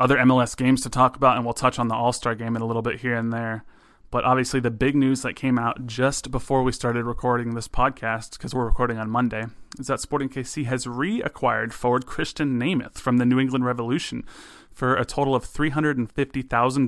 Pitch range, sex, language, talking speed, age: 115-130 Hz, male, English, 230 wpm, 30-49